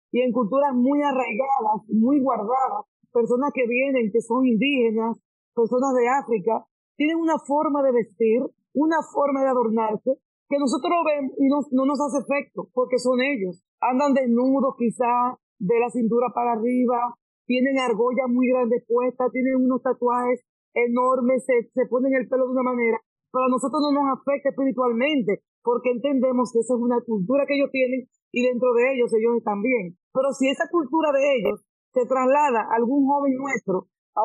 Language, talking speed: English, 175 wpm